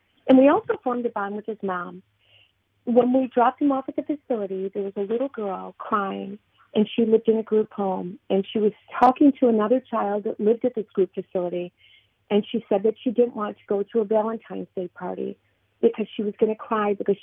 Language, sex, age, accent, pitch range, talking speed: English, female, 40-59, American, 190-225 Hz, 225 wpm